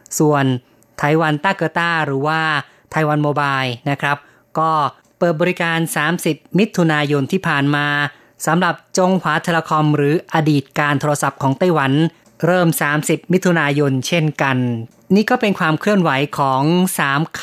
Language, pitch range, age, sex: Thai, 140-165 Hz, 20-39, female